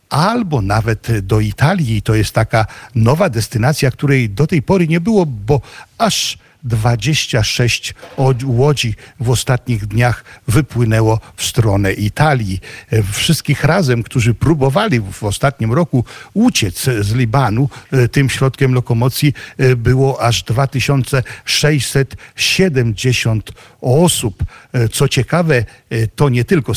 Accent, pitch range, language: native, 115-140 Hz, Polish